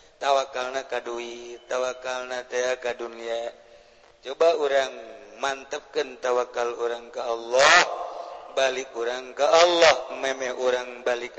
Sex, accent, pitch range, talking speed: male, native, 115-130 Hz, 100 wpm